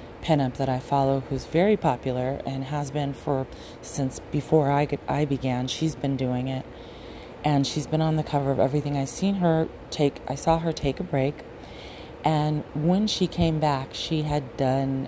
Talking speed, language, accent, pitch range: 185 wpm, English, American, 130-150 Hz